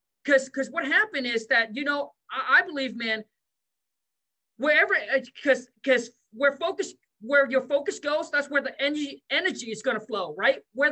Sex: male